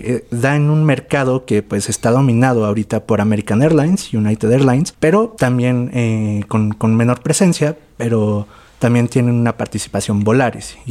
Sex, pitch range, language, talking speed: male, 115-150 Hz, Spanish, 155 wpm